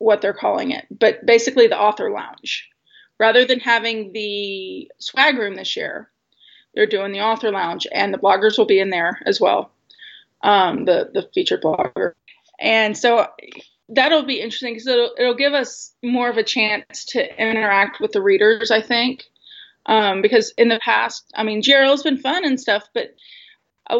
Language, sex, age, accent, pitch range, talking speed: English, female, 30-49, American, 210-260 Hz, 180 wpm